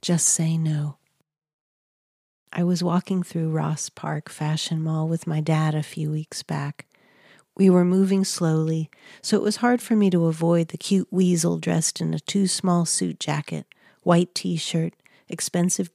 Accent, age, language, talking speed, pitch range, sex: American, 40-59, English, 160 wpm, 160-185 Hz, female